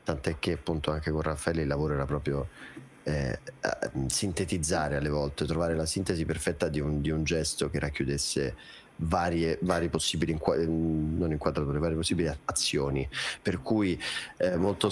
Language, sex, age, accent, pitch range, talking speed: Italian, male, 30-49, native, 80-95 Hz, 155 wpm